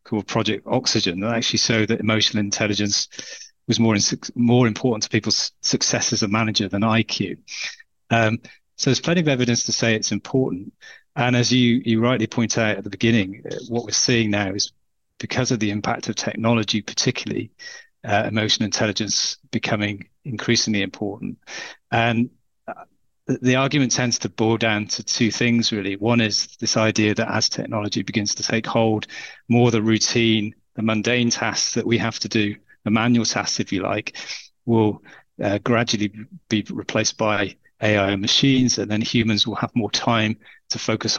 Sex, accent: male, British